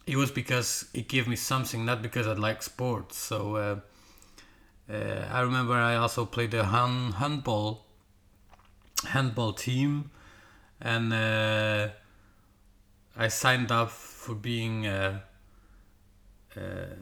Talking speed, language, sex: 115 wpm, English, male